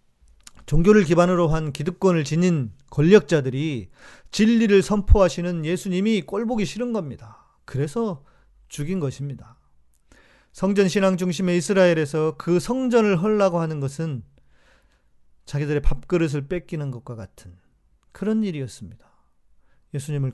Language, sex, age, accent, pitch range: Korean, male, 40-59, native, 125-180 Hz